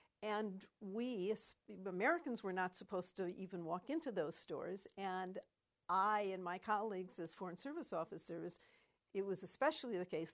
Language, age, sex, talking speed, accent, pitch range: English, 60-79, female, 150 wpm, American, 175-215 Hz